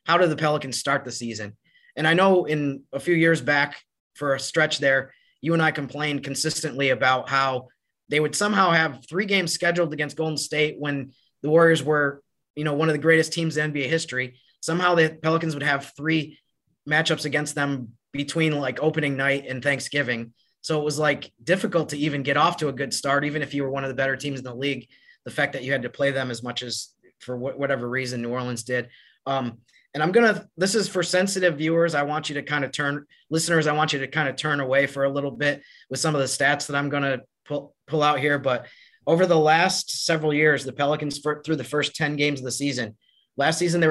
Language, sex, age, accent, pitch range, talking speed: English, male, 20-39, American, 135-160 Hz, 230 wpm